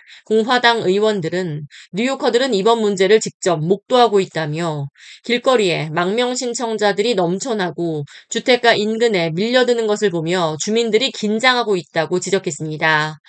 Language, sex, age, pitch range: Korean, female, 20-39, 180-240 Hz